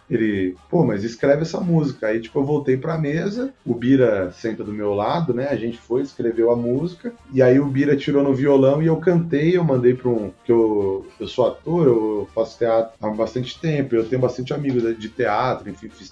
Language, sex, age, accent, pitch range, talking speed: Portuguese, male, 30-49, Brazilian, 115-145 Hz, 215 wpm